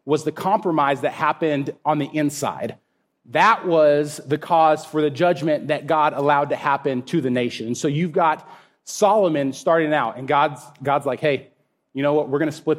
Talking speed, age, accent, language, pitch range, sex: 190 wpm, 30-49, American, English, 145-175 Hz, male